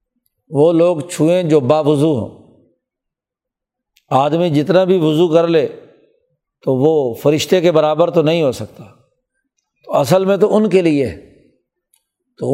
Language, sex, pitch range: Urdu, male, 150-180 Hz